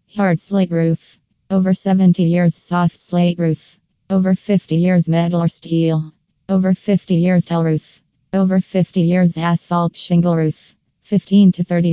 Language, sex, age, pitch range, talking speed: English, female, 20-39, 165-180 Hz, 145 wpm